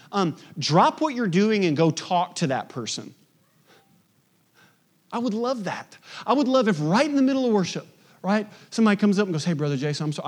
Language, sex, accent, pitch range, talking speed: English, male, American, 155-200 Hz, 205 wpm